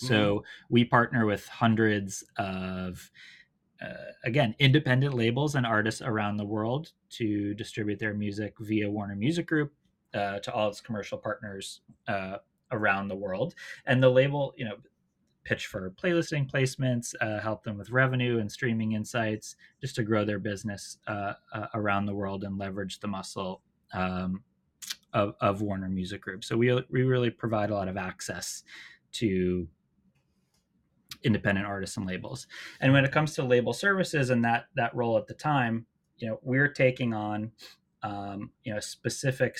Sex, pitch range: male, 100-125 Hz